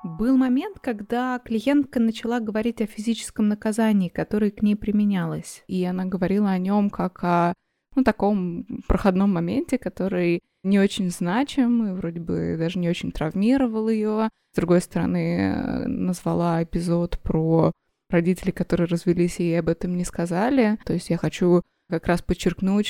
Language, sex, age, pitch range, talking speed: Russian, female, 20-39, 170-200 Hz, 150 wpm